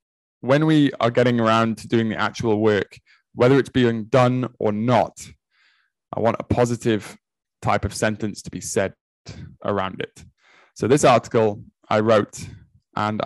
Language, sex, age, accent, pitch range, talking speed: English, male, 20-39, British, 110-135 Hz, 155 wpm